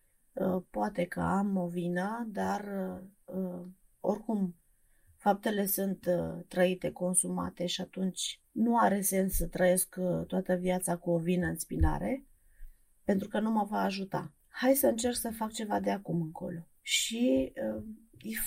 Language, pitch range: Romanian, 170-235 Hz